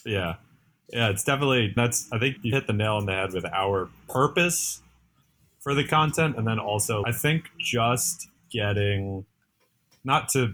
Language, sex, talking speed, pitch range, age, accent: English, male, 165 wpm, 100-120 Hz, 30-49, American